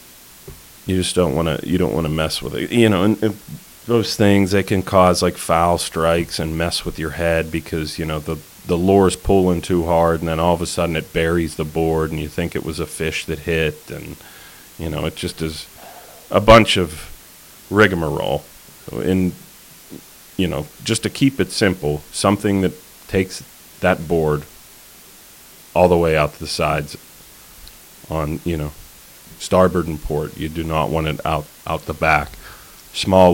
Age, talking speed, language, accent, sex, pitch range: 30-49, 185 wpm, English, American, male, 80-95 Hz